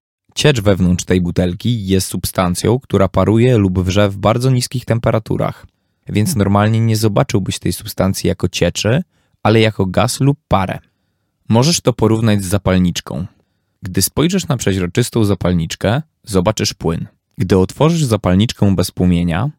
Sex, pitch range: male, 95-120 Hz